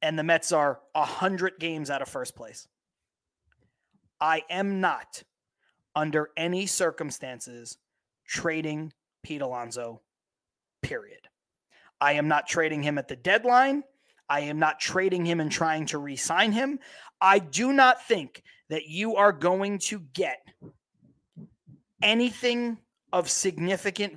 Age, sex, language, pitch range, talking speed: 30-49, male, English, 155-210 Hz, 125 wpm